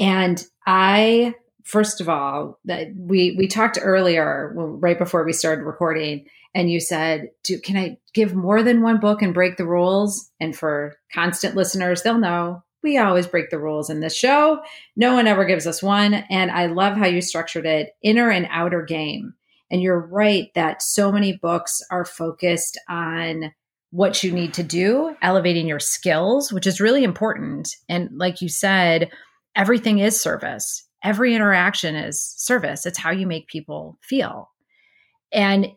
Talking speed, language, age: 165 wpm, English, 30-49